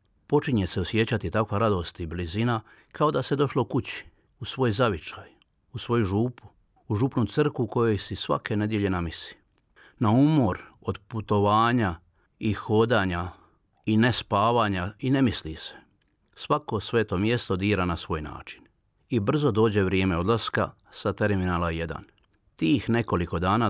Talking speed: 145 wpm